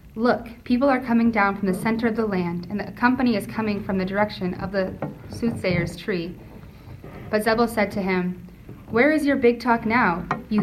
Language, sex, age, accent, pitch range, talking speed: English, female, 30-49, American, 190-230 Hz, 200 wpm